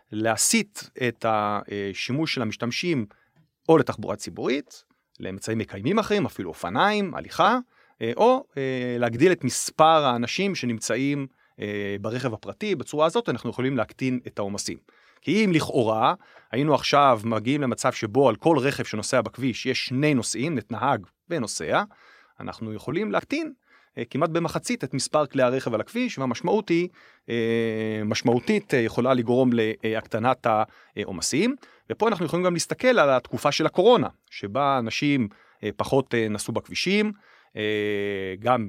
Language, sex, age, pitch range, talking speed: Hebrew, male, 30-49, 110-160 Hz, 125 wpm